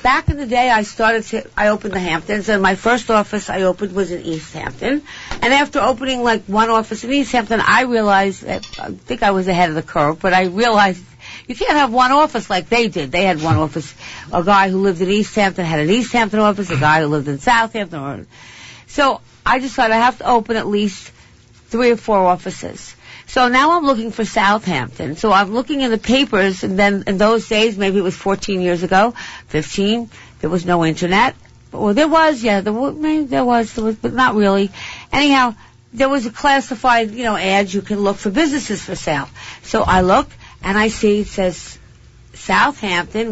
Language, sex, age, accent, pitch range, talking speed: English, female, 50-69, American, 185-240 Hz, 210 wpm